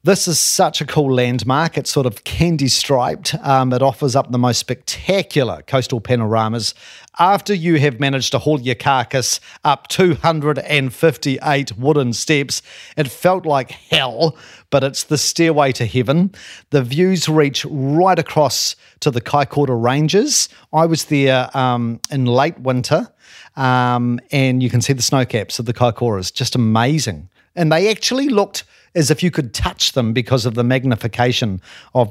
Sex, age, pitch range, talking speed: male, 40-59, 125-155 Hz, 155 wpm